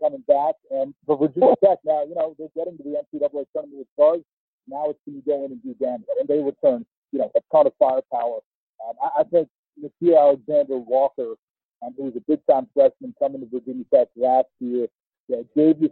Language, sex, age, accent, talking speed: English, male, 50-69, American, 210 wpm